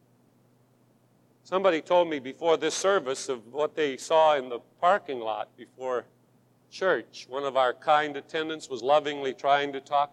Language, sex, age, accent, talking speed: English, male, 50-69, American, 155 wpm